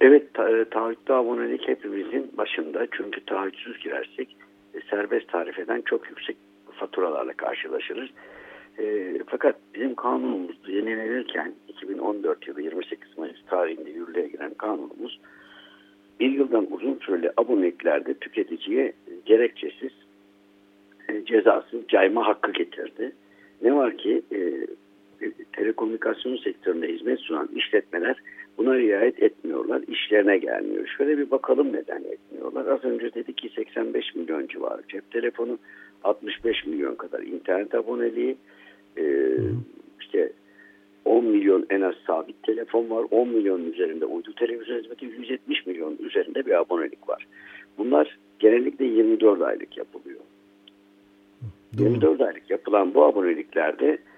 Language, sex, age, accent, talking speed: Turkish, male, 60-79, native, 115 wpm